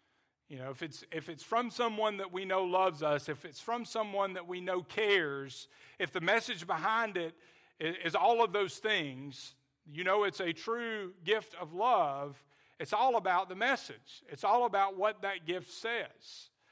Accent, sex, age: American, male, 40-59